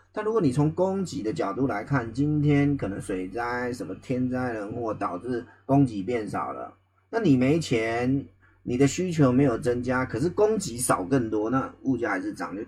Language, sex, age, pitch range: Chinese, male, 30-49, 100-145 Hz